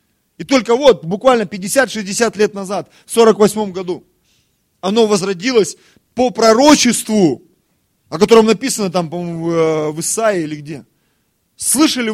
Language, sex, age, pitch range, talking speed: Russian, male, 30-49, 155-225 Hz, 110 wpm